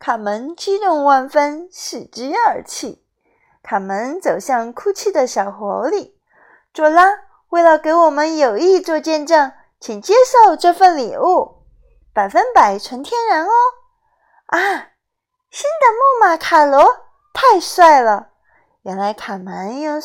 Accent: native